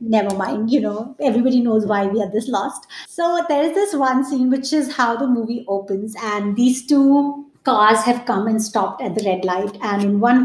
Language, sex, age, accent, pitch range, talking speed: English, female, 20-39, Indian, 220-285 Hz, 220 wpm